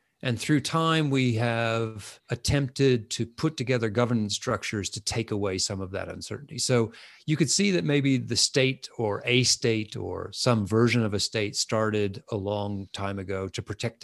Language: English